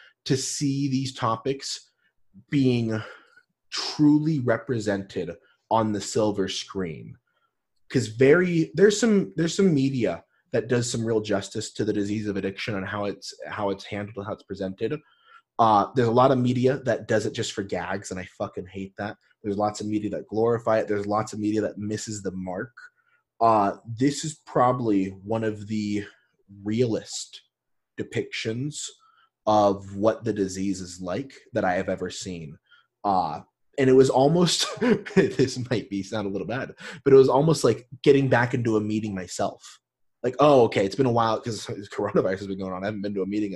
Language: English